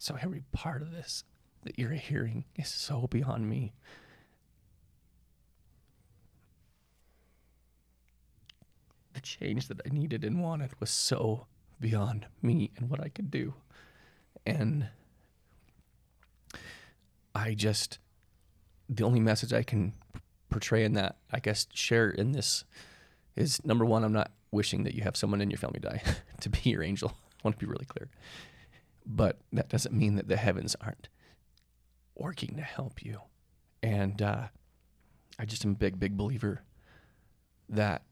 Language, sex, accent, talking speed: English, male, American, 140 wpm